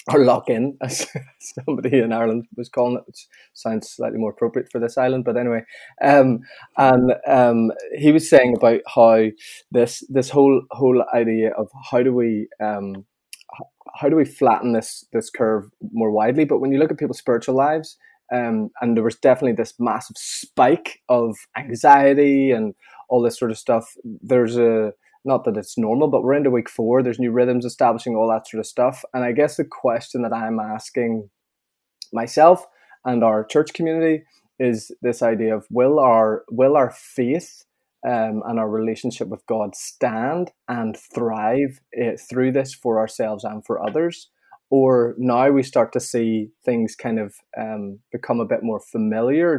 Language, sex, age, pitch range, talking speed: English, male, 20-39, 110-130 Hz, 175 wpm